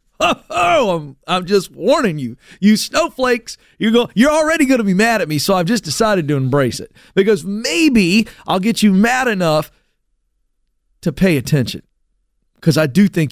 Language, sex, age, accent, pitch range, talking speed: English, male, 40-59, American, 125-195 Hz, 160 wpm